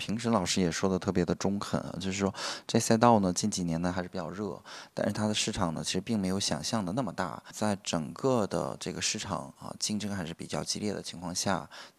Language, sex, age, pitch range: Chinese, male, 20-39, 85-105 Hz